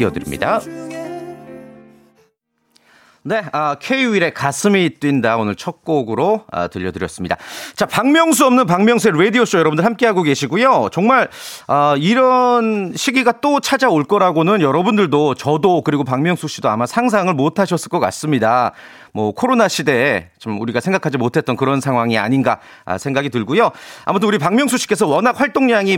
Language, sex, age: Korean, male, 40-59